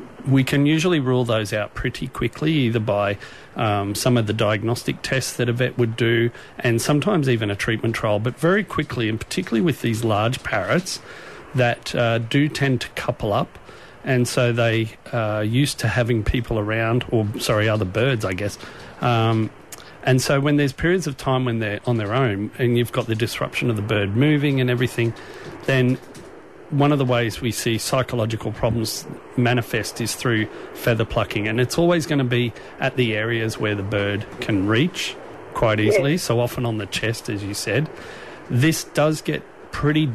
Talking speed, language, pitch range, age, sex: 185 wpm, English, 110-135 Hz, 40-59, male